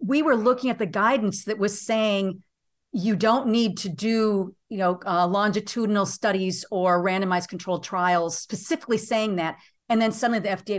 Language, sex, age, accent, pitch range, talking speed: English, female, 50-69, American, 195-245 Hz, 170 wpm